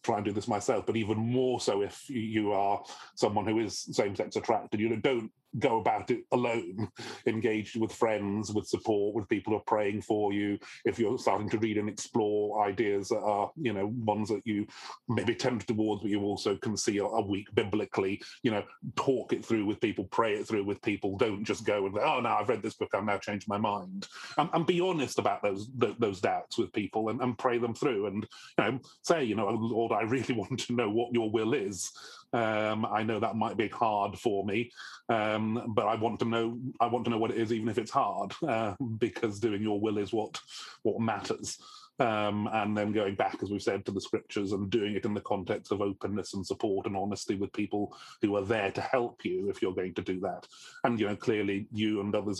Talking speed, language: 230 wpm, English